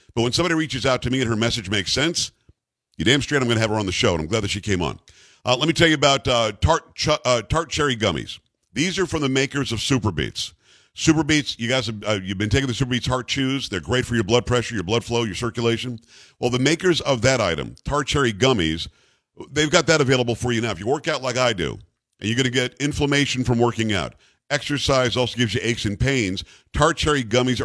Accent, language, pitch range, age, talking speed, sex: American, English, 115-140 Hz, 50-69, 255 wpm, male